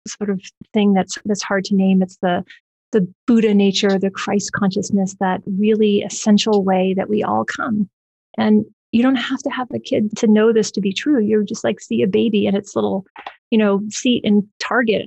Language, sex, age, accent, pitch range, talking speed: English, female, 30-49, American, 200-235 Hz, 205 wpm